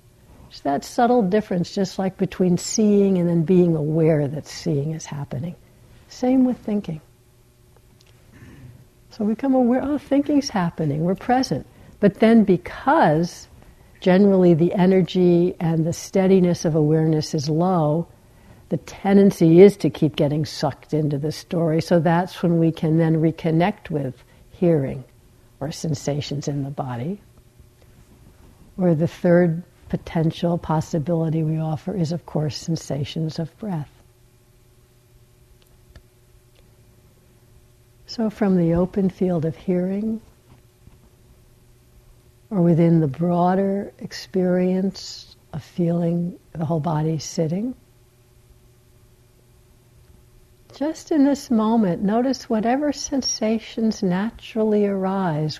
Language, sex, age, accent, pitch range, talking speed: English, female, 60-79, American, 130-190 Hz, 115 wpm